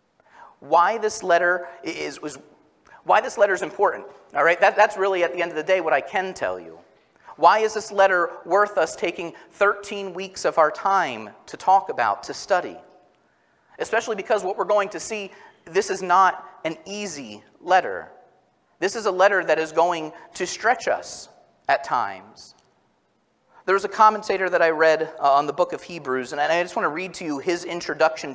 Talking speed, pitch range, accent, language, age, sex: 195 wpm, 160-205 Hz, American, English, 30-49, male